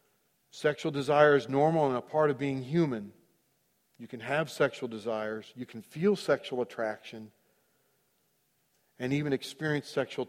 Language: English